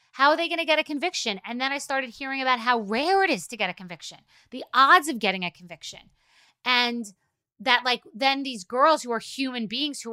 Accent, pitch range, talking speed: American, 220-270 Hz, 225 wpm